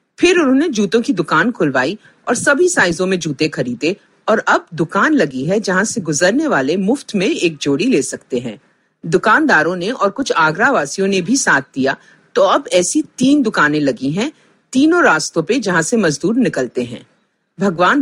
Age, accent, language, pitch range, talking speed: 50-69, native, Hindi, 160-260 Hz, 175 wpm